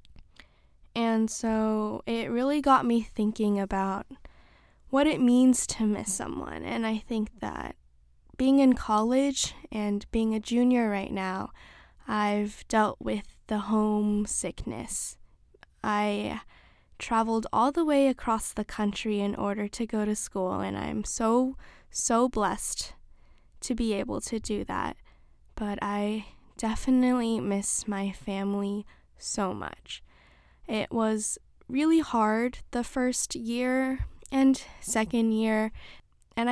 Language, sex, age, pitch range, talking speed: English, female, 10-29, 205-240 Hz, 125 wpm